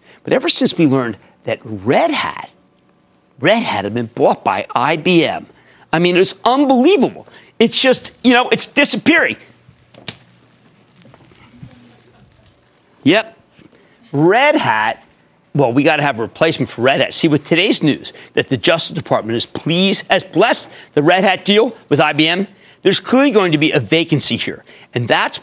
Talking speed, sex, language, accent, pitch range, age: 160 wpm, male, English, American, 145-215 Hz, 40-59